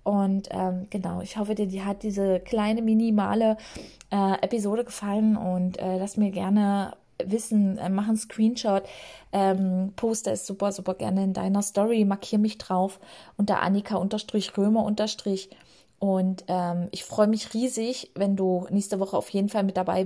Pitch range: 180-205 Hz